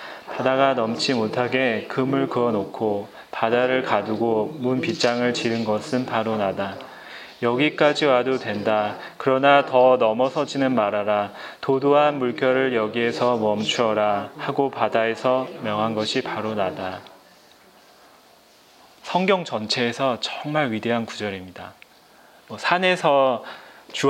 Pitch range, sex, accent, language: 110-145 Hz, male, native, Korean